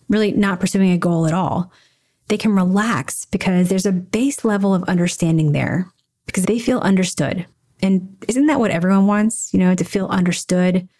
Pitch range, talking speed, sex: 175-215 Hz, 180 wpm, female